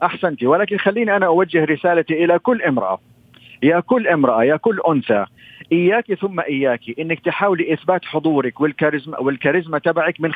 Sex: male